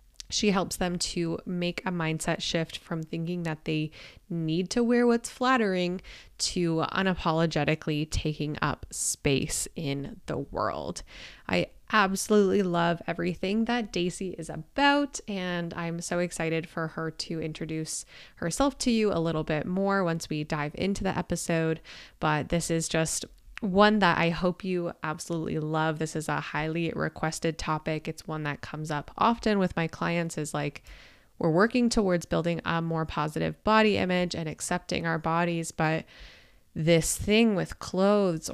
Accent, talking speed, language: American, 155 wpm, English